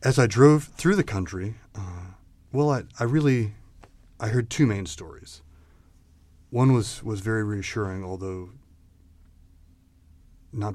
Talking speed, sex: 130 wpm, male